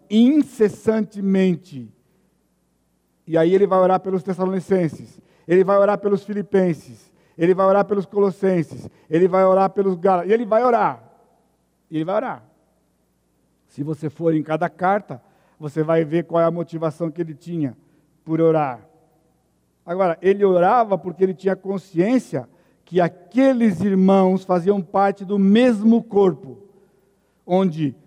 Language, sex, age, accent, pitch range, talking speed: Portuguese, male, 60-79, Brazilian, 150-200 Hz, 135 wpm